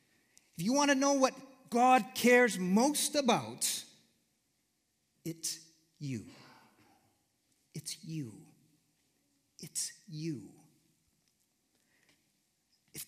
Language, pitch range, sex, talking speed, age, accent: English, 145-220 Hz, male, 80 wpm, 50-69, American